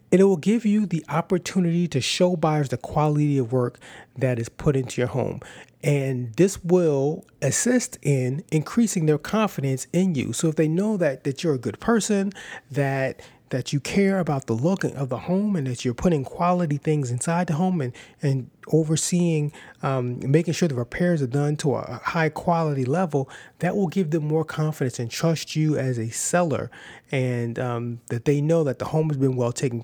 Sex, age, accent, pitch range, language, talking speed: male, 30-49, American, 130-170 Hz, English, 195 wpm